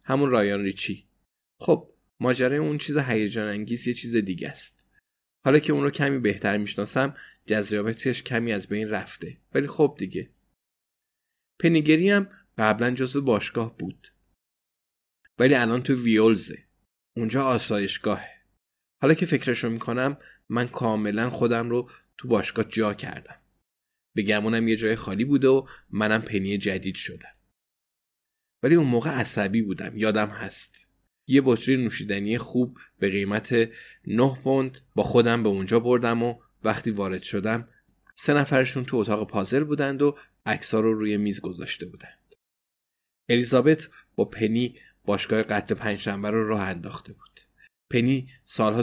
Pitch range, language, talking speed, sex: 105-130 Hz, Persian, 140 wpm, male